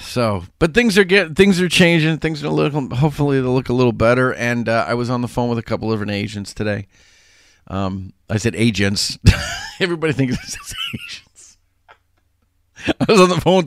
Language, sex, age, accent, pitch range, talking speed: English, male, 40-59, American, 95-130 Hz, 190 wpm